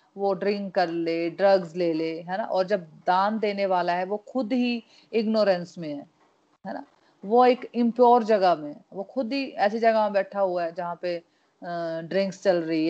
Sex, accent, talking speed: female, native, 195 wpm